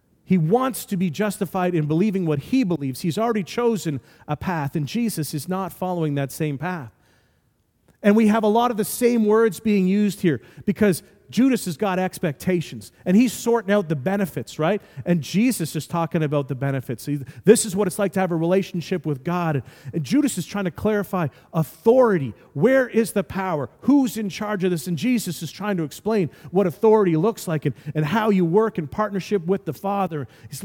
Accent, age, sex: American, 40-59, male